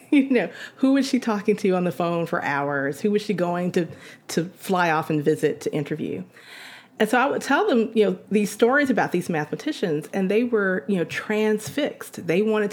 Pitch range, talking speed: 170-220 Hz, 210 wpm